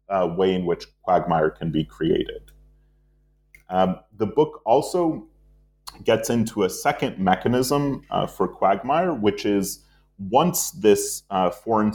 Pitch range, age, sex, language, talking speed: 95-130 Hz, 30-49, male, English, 130 wpm